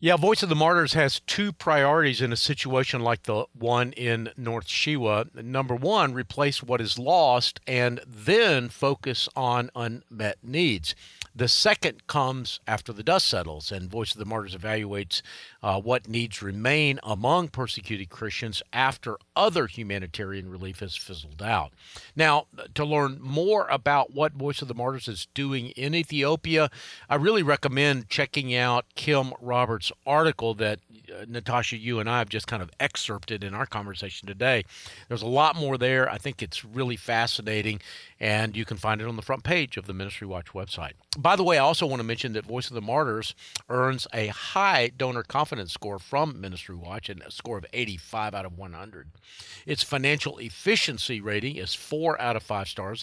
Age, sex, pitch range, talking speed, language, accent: 50-69, male, 105-140 Hz, 180 wpm, English, American